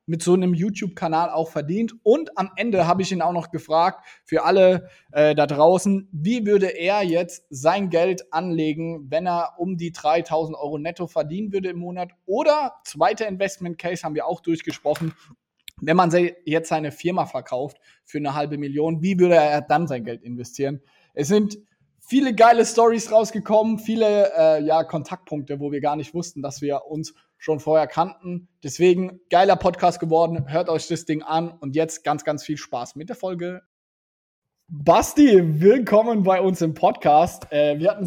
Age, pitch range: 20-39, 155-185 Hz